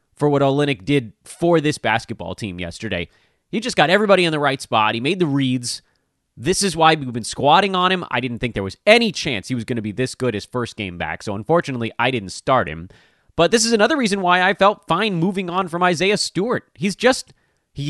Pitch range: 105-160 Hz